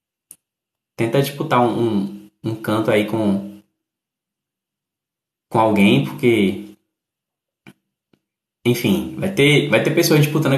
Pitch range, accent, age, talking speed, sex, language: 115-160 Hz, Brazilian, 20-39, 100 wpm, male, Portuguese